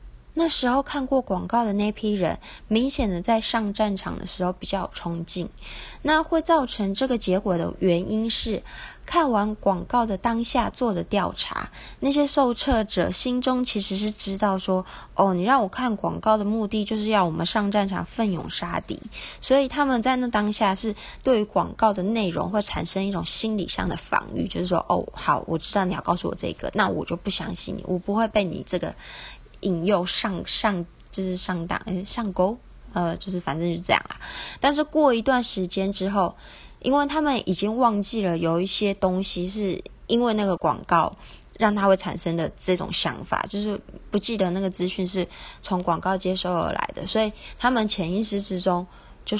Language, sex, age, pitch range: Chinese, female, 20-39, 185-225 Hz